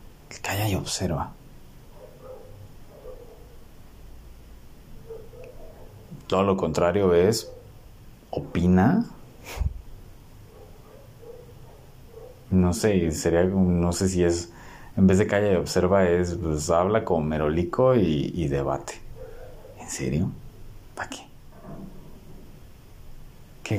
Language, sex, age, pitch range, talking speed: Spanish, male, 30-49, 85-110 Hz, 85 wpm